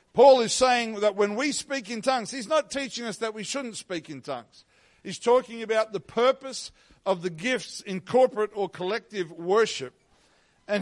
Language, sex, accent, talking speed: English, male, Australian, 185 wpm